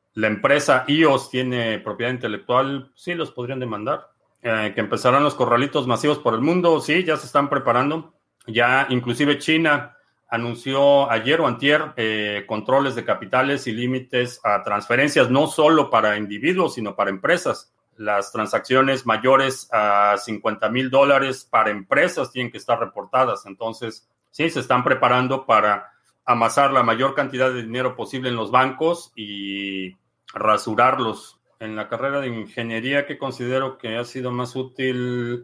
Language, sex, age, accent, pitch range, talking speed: Spanish, male, 40-59, Mexican, 110-140 Hz, 150 wpm